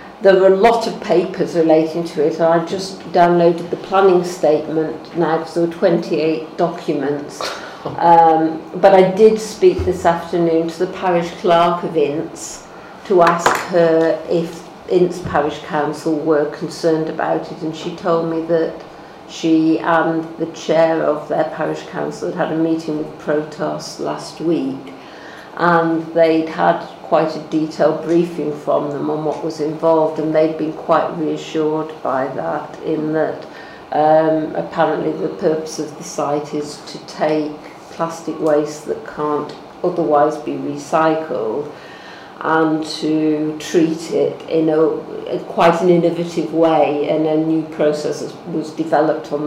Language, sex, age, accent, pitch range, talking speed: English, female, 50-69, British, 155-170 Hz, 150 wpm